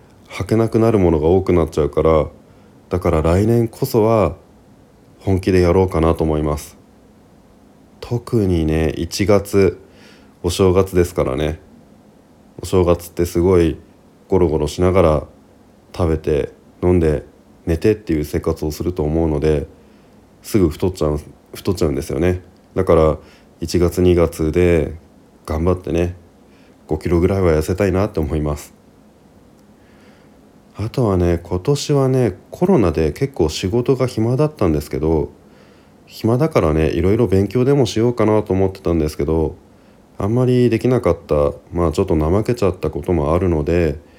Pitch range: 80-105 Hz